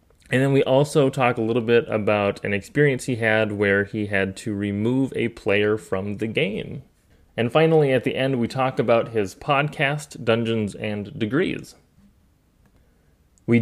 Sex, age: male, 20-39